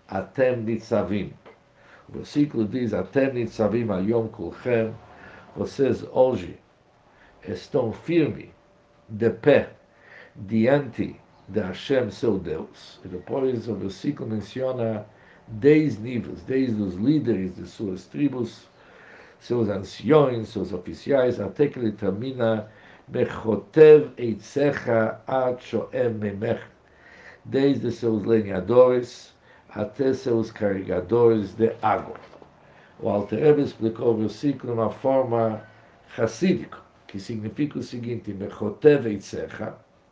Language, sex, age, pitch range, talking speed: Portuguese, male, 60-79, 105-130 Hz, 105 wpm